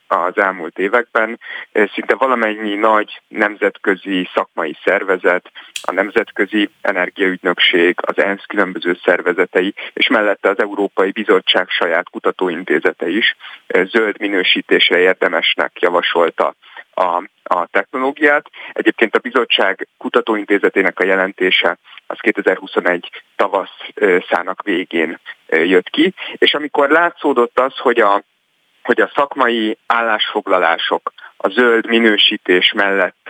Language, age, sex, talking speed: Hungarian, 30-49, male, 105 wpm